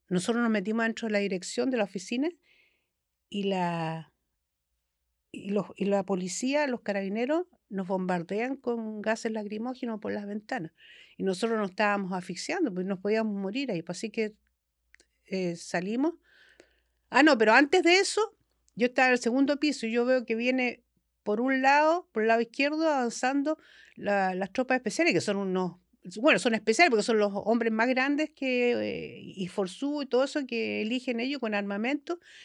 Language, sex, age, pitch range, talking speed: Spanish, female, 50-69, 195-270 Hz, 165 wpm